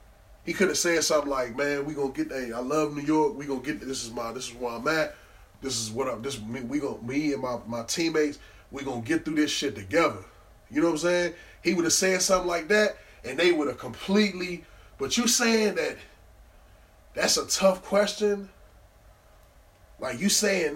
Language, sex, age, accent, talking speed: English, male, 20-39, American, 215 wpm